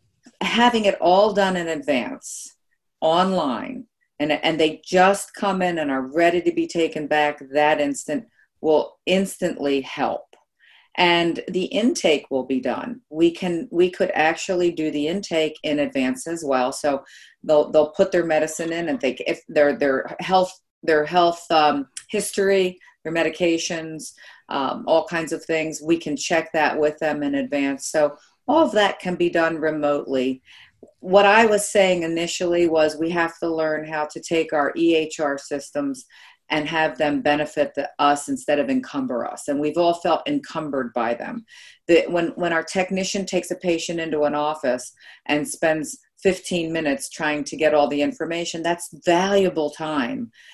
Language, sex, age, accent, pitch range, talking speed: English, female, 40-59, American, 150-185 Hz, 170 wpm